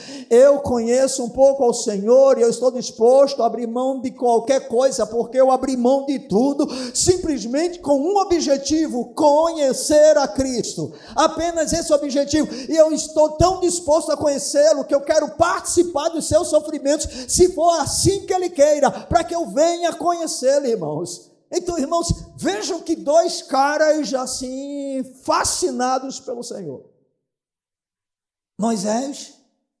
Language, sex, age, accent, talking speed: Portuguese, male, 50-69, Brazilian, 140 wpm